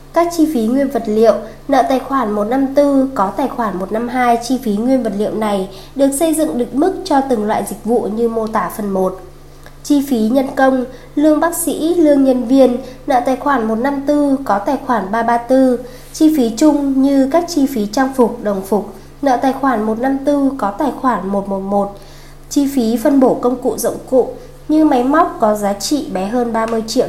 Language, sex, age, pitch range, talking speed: Vietnamese, female, 20-39, 220-275 Hz, 200 wpm